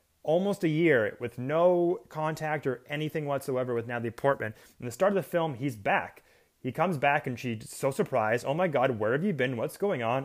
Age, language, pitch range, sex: 30-49, English, 120-155 Hz, male